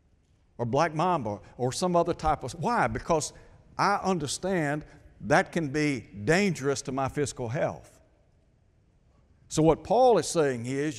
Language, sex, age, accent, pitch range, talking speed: English, male, 60-79, American, 110-165 Hz, 140 wpm